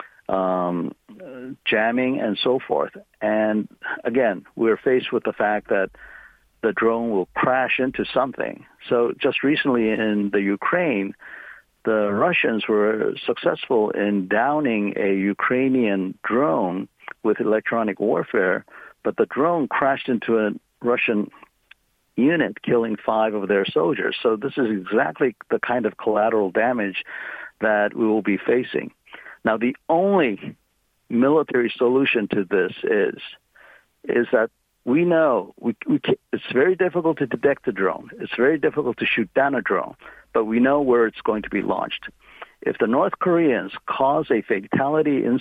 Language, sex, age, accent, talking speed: English, male, 60-79, American, 145 wpm